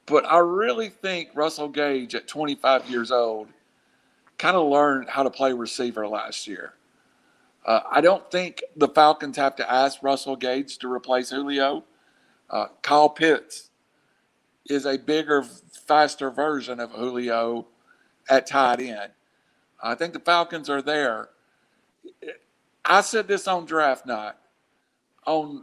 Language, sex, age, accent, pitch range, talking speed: English, male, 50-69, American, 125-150 Hz, 140 wpm